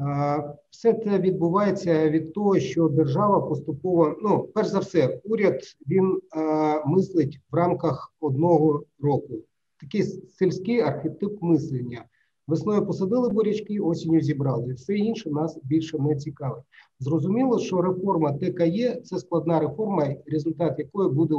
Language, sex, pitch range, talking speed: Ukrainian, male, 155-190 Hz, 125 wpm